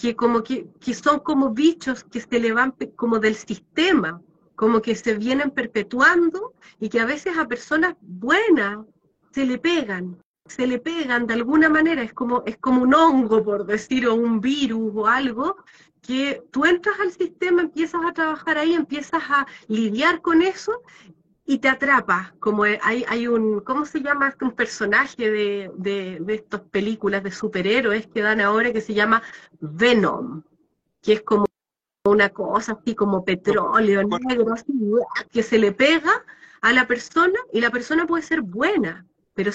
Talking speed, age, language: 165 wpm, 30-49, Spanish